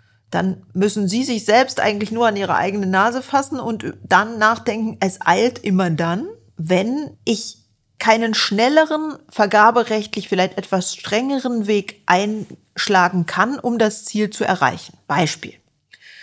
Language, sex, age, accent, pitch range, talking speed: German, female, 40-59, German, 190-240 Hz, 135 wpm